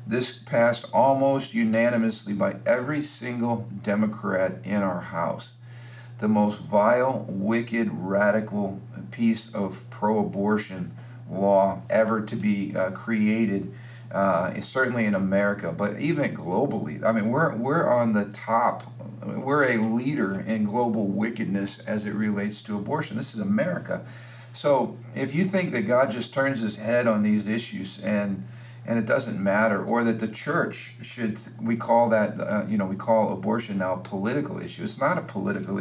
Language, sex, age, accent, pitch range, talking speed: English, male, 50-69, American, 105-120 Hz, 155 wpm